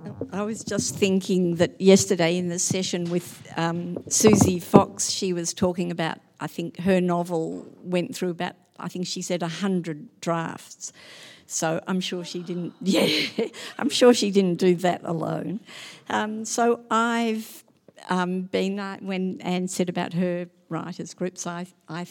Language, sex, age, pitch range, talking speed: English, female, 50-69, 165-195 Hz, 155 wpm